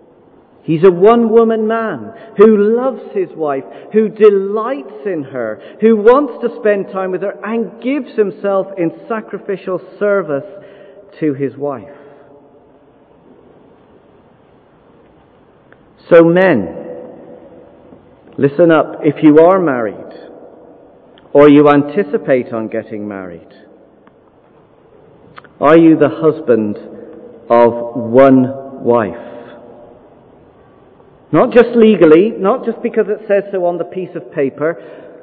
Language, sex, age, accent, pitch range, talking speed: English, male, 40-59, British, 140-205 Hz, 105 wpm